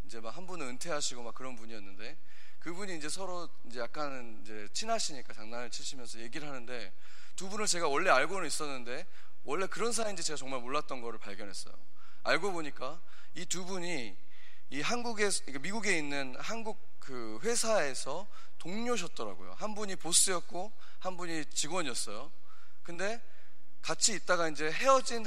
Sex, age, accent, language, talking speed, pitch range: male, 30-49, Korean, English, 130 wpm, 130-200 Hz